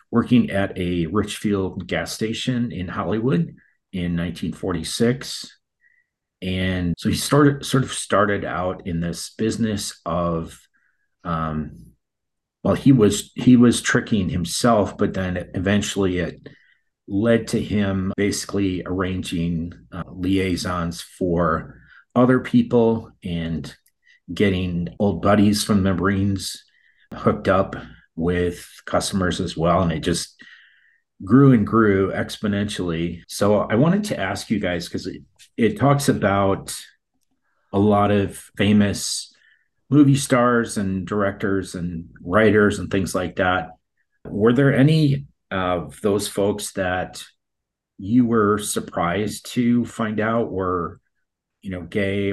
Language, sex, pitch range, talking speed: English, male, 90-115 Hz, 125 wpm